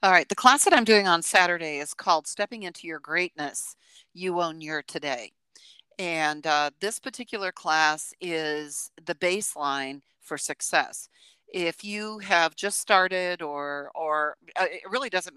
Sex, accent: female, American